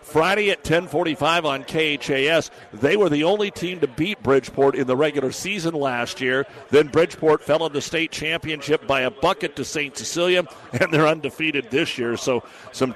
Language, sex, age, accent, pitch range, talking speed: English, male, 60-79, American, 135-165 Hz, 180 wpm